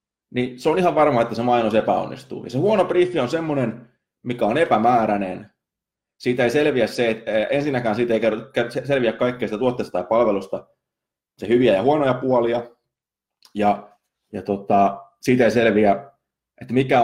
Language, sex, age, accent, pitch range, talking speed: Finnish, male, 30-49, native, 110-150 Hz, 155 wpm